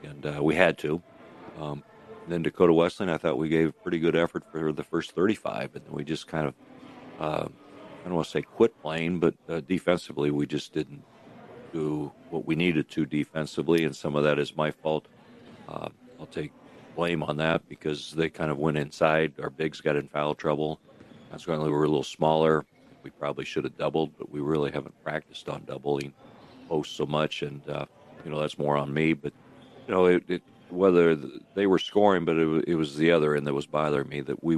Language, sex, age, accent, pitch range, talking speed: English, male, 50-69, American, 75-80 Hz, 210 wpm